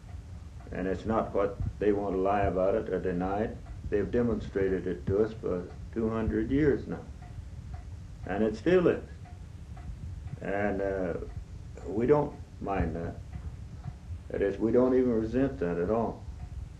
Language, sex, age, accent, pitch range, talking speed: English, male, 60-79, American, 90-110 Hz, 145 wpm